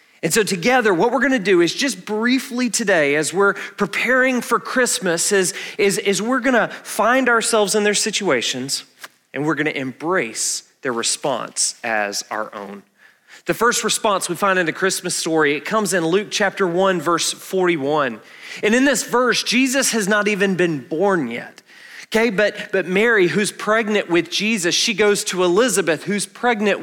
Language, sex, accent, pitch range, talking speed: English, male, American, 160-215 Hz, 170 wpm